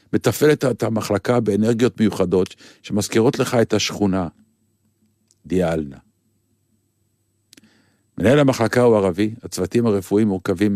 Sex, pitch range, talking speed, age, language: male, 95-115 Hz, 95 wpm, 50-69, Hebrew